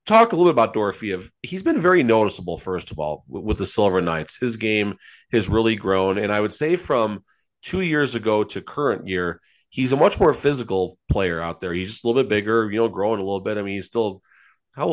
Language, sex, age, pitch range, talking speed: English, male, 30-49, 95-130 Hz, 235 wpm